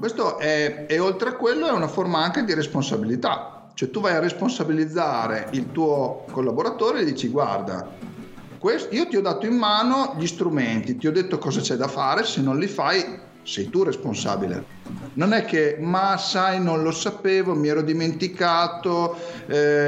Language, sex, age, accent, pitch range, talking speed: Italian, male, 40-59, native, 145-195 Hz, 175 wpm